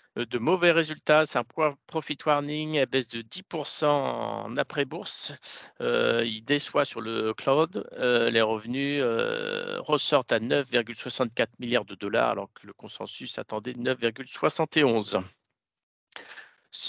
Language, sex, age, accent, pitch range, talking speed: French, male, 50-69, French, 120-150 Hz, 125 wpm